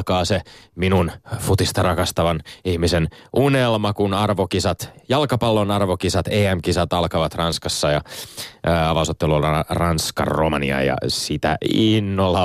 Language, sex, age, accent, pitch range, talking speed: Finnish, male, 30-49, native, 90-115 Hz, 95 wpm